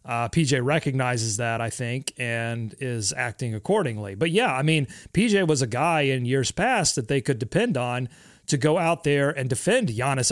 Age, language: 30-49, English